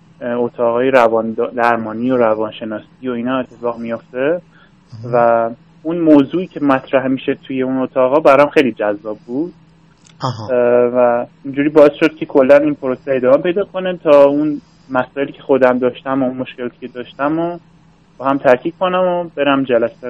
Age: 30-49